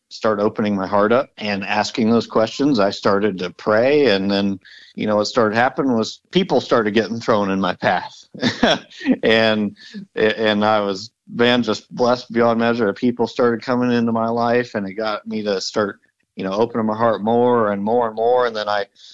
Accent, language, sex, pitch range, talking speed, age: American, English, male, 105-125 Hz, 200 wpm, 50-69